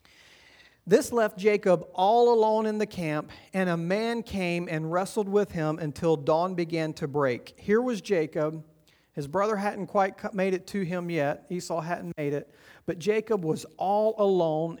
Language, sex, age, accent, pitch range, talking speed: English, male, 40-59, American, 150-200 Hz, 170 wpm